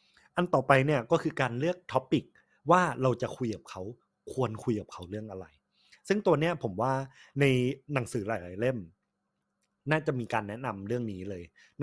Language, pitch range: Thai, 110-140 Hz